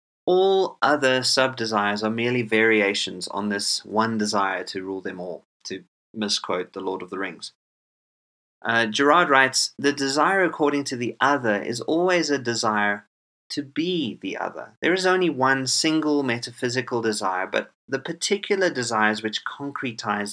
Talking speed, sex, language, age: 150 wpm, male, English, 30-49